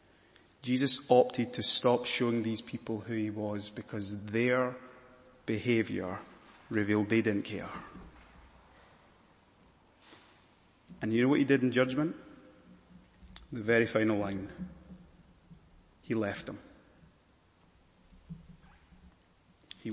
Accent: British